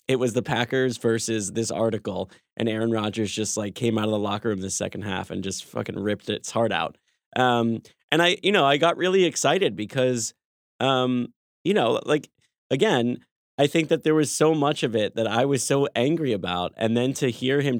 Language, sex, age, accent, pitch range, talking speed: English, male, 20-39, American, 110-145 Hz, 210 wpm